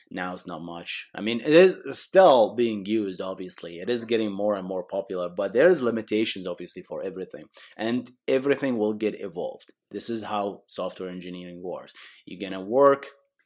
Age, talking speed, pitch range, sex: 30-49, 175 wpm, 105-135 Hz, male